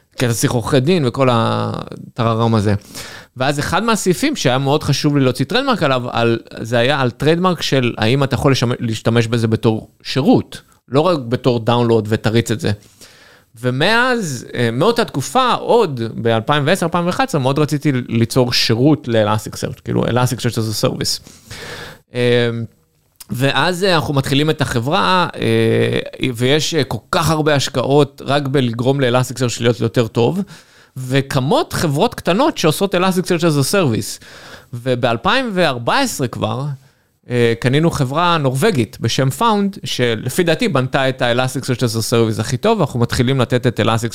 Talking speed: 135 wpm